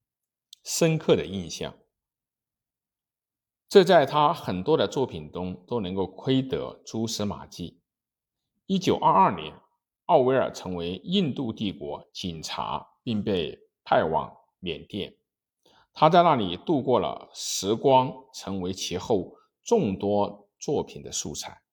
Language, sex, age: Chinese, male, 50-69